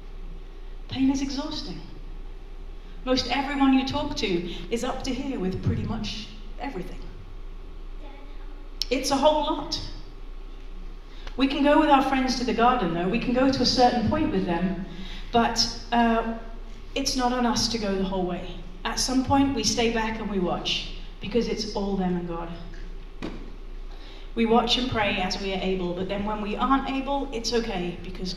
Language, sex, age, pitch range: English, female, 40-59, 180-235 Hz